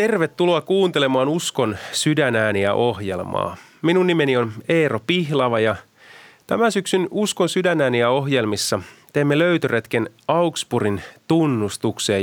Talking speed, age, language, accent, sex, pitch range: 110 wpm, 30-49, Finnish, native, male, 110-170 Hz